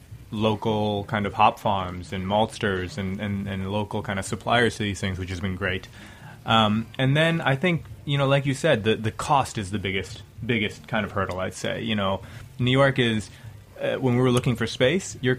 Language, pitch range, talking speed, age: English, 100-125 Hz, 215 wpm, 20-39